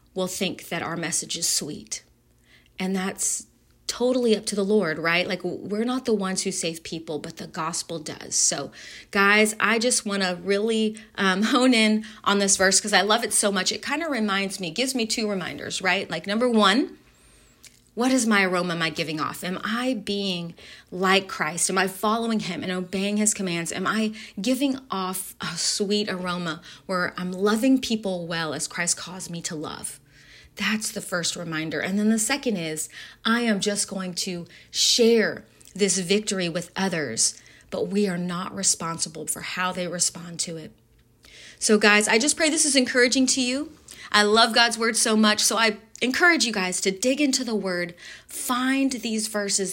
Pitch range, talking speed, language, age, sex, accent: 175-220 Hz, 190 wpm, English, 30-49, female, American